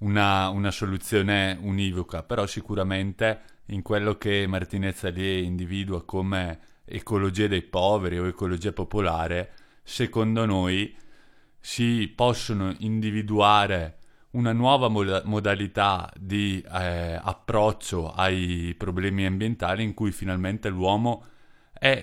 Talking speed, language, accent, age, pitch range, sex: 105 wpm, Italian, native, 30-49, 95-110 Hz, male